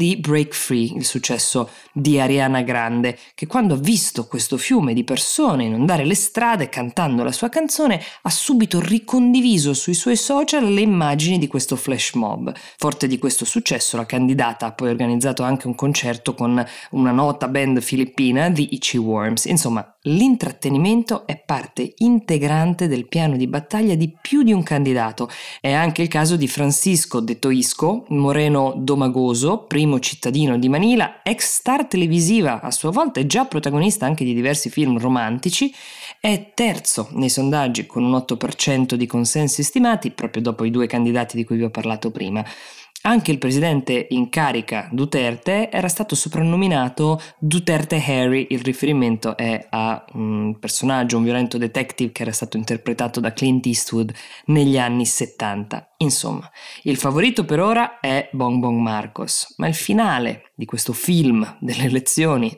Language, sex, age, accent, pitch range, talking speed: Italian, female, 20-39, native, 120-175 Hz, 155 wpm